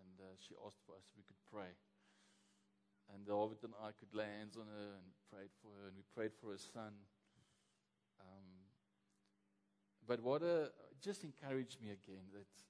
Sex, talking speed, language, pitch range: male, 180 wpm, English, 100-135 Hz